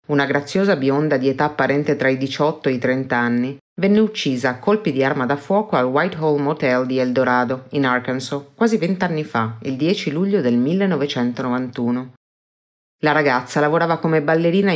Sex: female